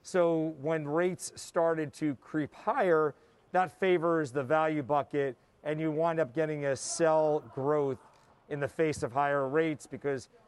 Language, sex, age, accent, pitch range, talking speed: English, male, 40-59, American, 145-180 Hz, 155 wpm